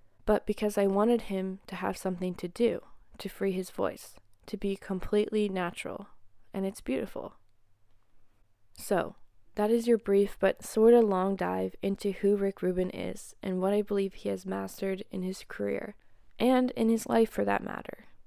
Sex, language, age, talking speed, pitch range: female, English, 20-39, 175 wpm, 165-215 Hz